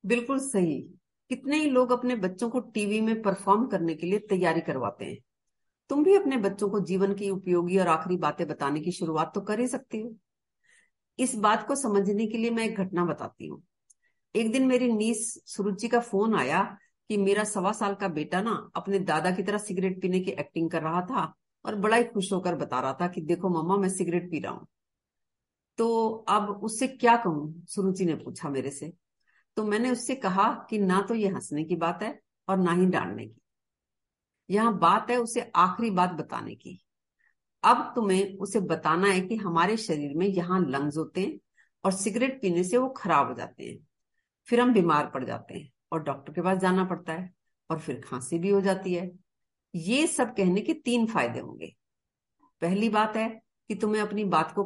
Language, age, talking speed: Hindi, 50-69, 200 wpm